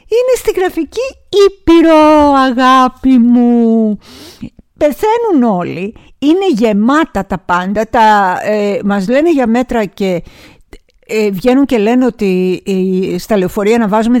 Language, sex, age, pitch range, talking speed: Greek, female, 50-69, 195-255 Hz, 105 wpm